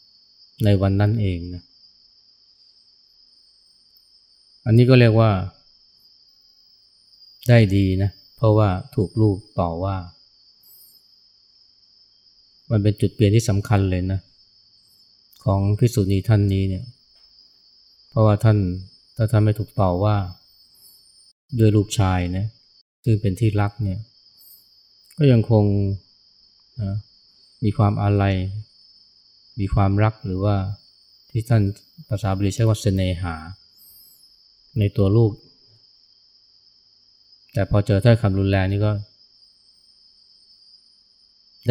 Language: Thai